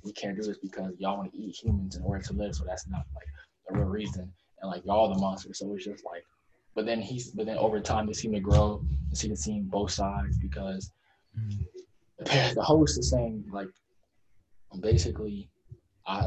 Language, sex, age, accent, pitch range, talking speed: English, male, 20-39, American, 95-110 Hz, 205 wpm